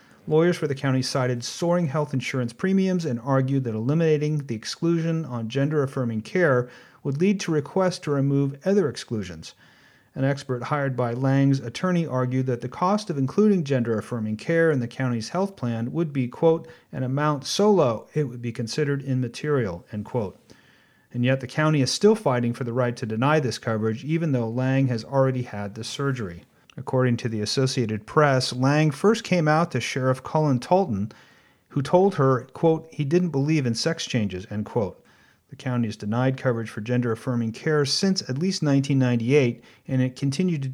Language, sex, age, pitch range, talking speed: English, male, 40-59, 120-155 Hz, 180 wpm